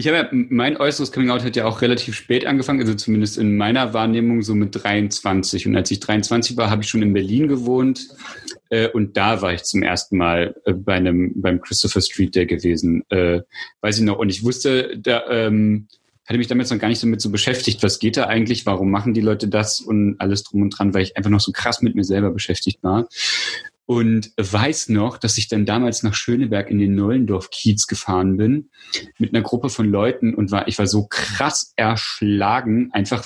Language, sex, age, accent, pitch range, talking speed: German, male, 30-49, German, 105-130 Hz, 210 wpm